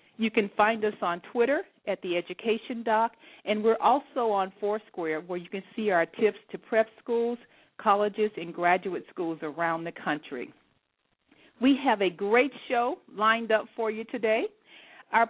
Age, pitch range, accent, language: 50-69, 185-230 Hz, American, English